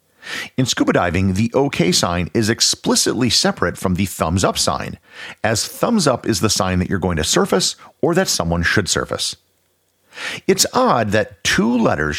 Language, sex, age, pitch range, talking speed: English, male, 50-69, 95-145 Hz, 160 wpm